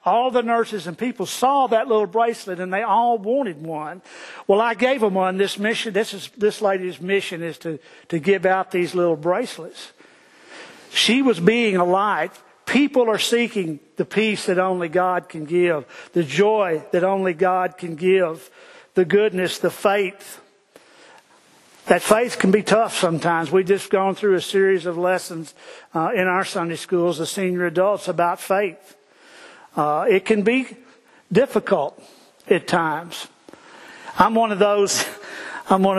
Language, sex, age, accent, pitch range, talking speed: English, male, 50-69, American, 170-210 Hz, 160 wpm